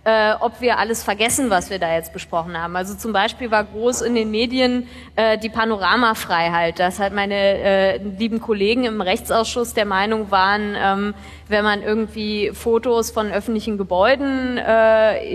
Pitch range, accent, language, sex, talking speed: 210-255 Hz, German, German, female, 160 wpm